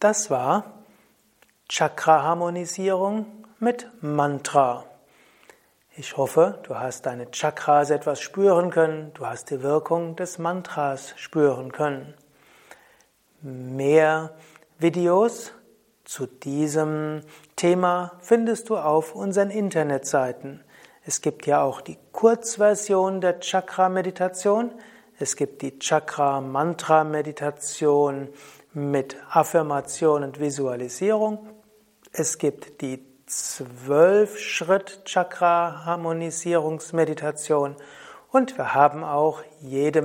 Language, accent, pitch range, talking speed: German, German, 145-185 Hz, 85 wpm